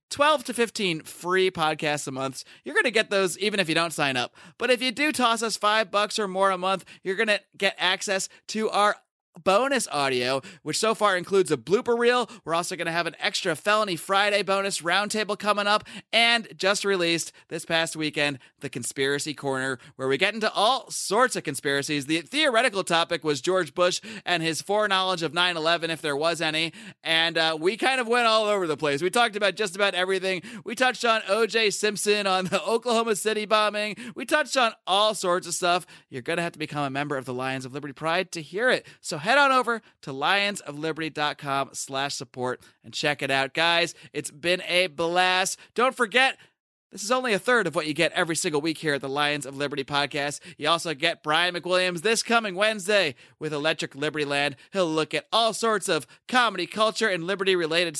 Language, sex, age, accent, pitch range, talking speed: English, male, 30-49, American, 150-210 Hz, 210 wpm